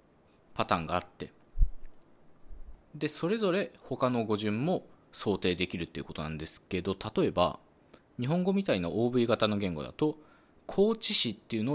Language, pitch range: Japanese, 85-125 Hz